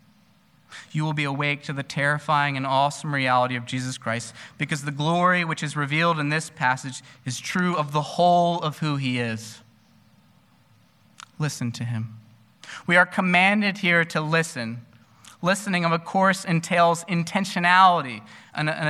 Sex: male